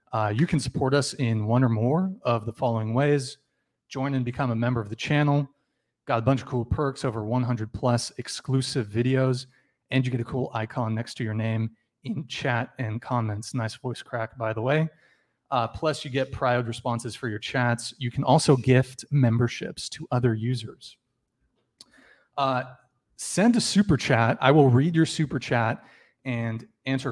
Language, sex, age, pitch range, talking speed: English, male, 30-49, 120-140 Hz, 180 wpm